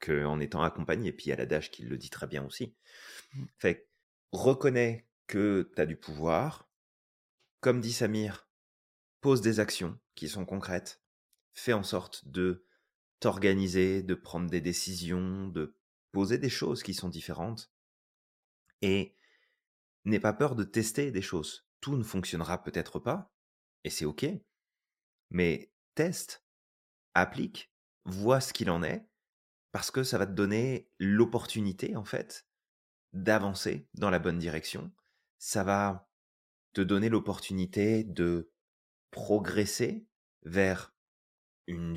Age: 30-49